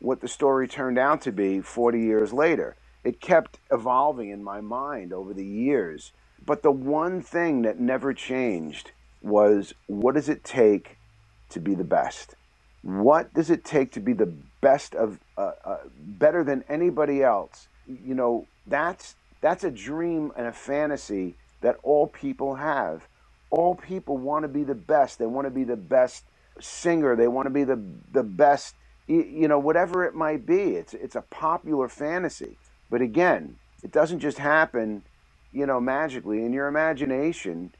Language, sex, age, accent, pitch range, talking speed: English, male, 50-69, American, 110-150 Hz, 170 wpm